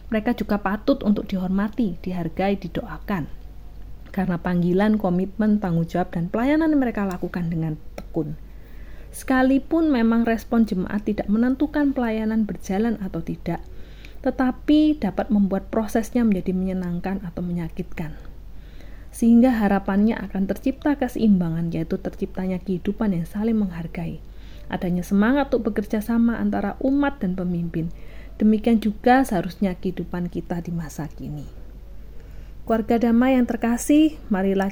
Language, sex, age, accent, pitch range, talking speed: Indonesian, female, 30-49, native, 180-230 Hz, 120 wpm